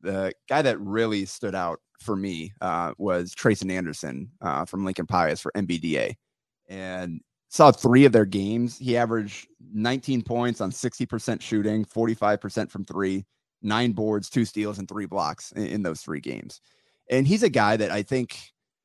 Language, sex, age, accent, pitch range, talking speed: English, male, 30-49, American, 95-115 Hz, 180 wpm